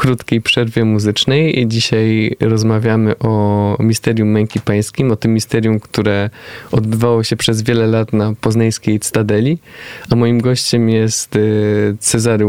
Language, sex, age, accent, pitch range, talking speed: Polish, male, 20-39, native, 105-120 Hz, 130 wpm